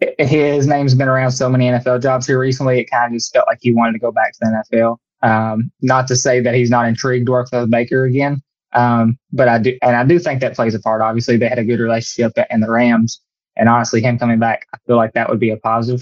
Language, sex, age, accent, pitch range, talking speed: English, male, 20-39, American, 115-130 Hz, 265 wpm